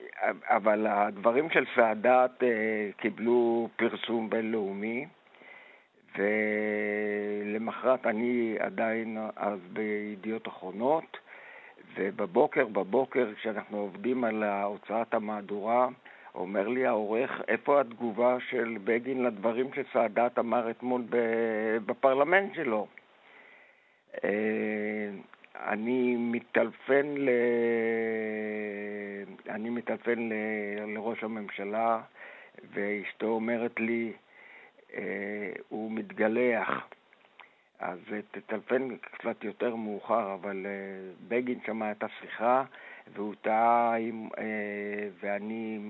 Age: 60-79